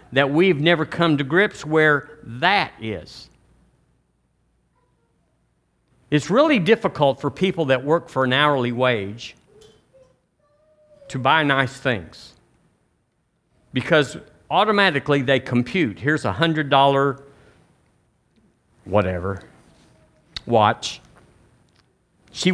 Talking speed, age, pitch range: 90 wpm, 50-69, 115-155 Hz